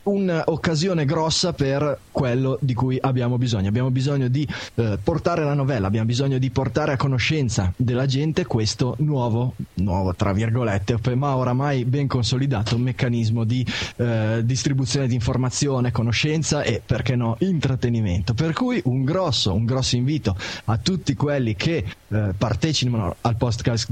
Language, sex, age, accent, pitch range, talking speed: Italian, male, 20-39, native, 110-135 Hz, 145 wpm